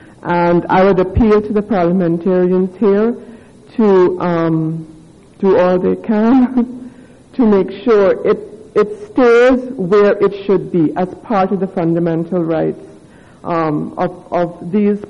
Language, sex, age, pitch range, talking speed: English, female, 60-79, 175-205 Hz, 135 wpm